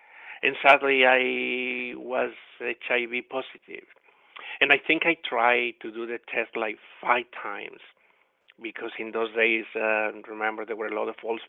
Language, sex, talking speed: English, male, 155 wpm